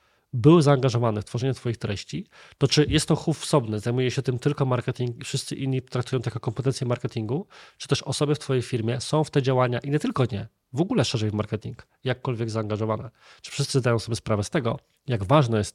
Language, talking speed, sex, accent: Polish, 215 wpm, male, native